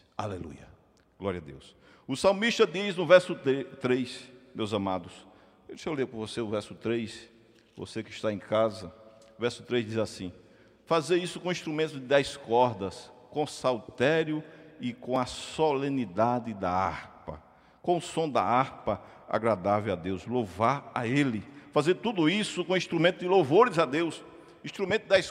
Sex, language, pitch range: male, Portuguese, 115-180 Hz